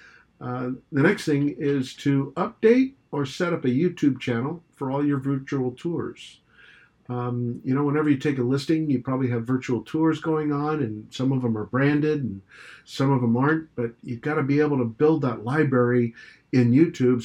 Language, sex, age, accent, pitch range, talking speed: English, male, 50-69, American, 120-155 Hz, 195 wpm